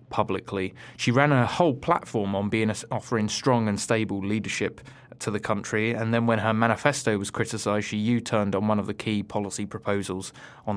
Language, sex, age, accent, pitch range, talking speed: English, male, 20-39, British, 105-125 Hz, 190 wpm